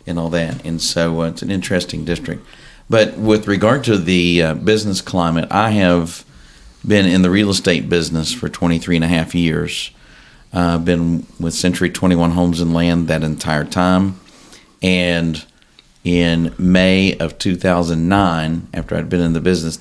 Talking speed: 165 wpm